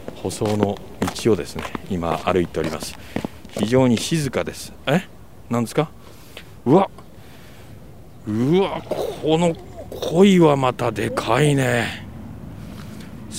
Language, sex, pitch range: Japanese, male, 100-135 Hz